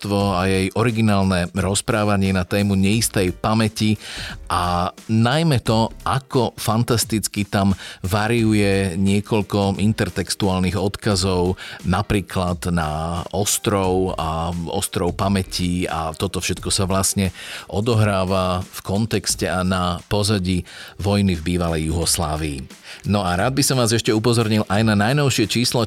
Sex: male